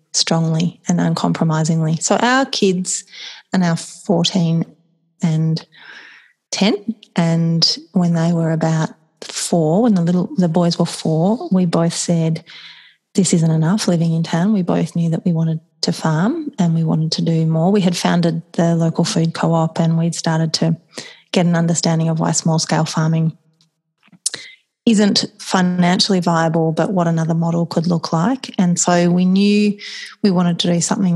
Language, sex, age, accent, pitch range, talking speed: English, female, 30-49, Australian, 165-185 Hz, 165 wpm